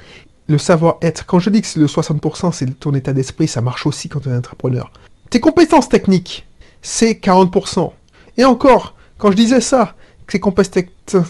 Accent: French